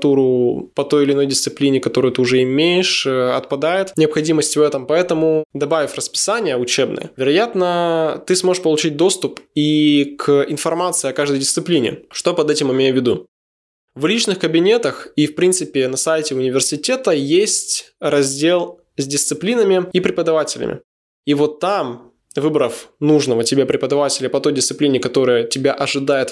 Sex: male